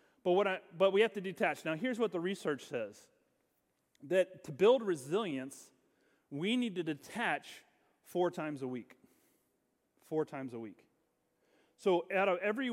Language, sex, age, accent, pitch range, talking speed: English, male, 30-49, American, 135-185 Hz, 150 wpm